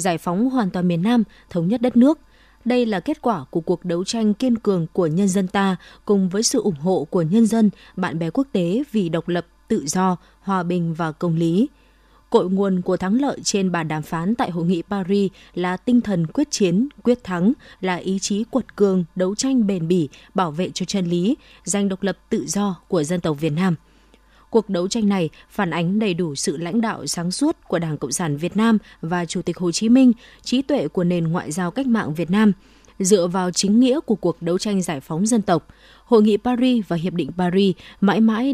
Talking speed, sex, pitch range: 225 wpm, female, 175-230 Hz